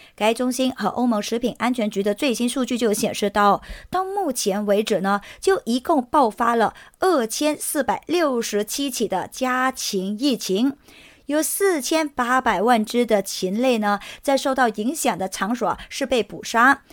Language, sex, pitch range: English, male, 210-285 Hz